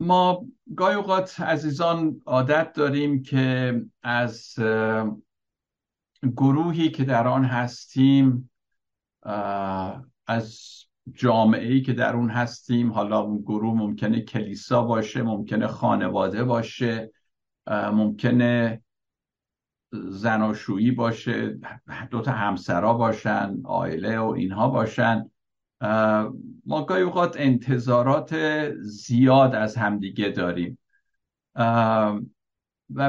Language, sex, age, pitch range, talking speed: Persian, male, 60-79, 110-145 Hz, 85 wpm